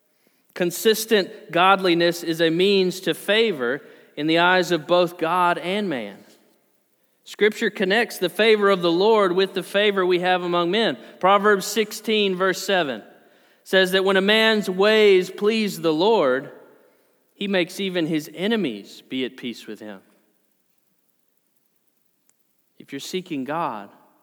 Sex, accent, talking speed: male, American, 140 wpm